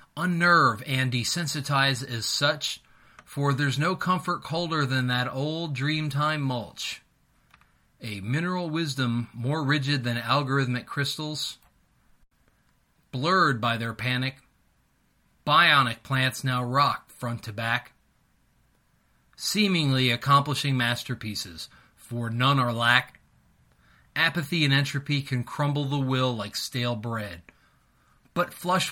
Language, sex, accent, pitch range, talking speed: English, male, American, 125-160 Hz, 110 wpm